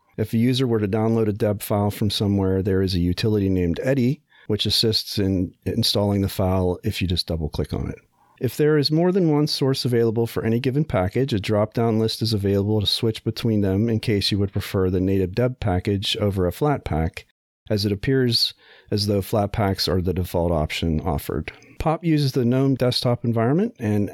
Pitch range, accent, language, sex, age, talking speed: 100-125 Hz, American, English, male, 40-59, 205 wpm